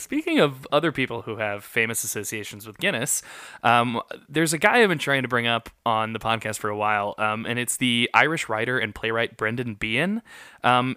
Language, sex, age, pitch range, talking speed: English, male, 20-39, 115-145 Hz, 200 wpm